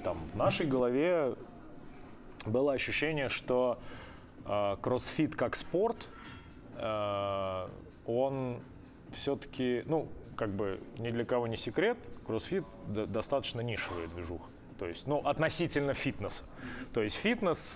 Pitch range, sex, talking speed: 110-130 Hz, male, 115 wpm